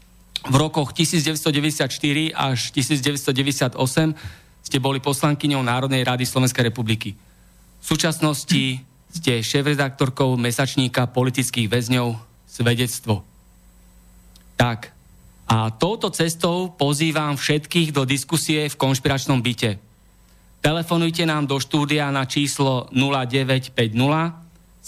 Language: Slovak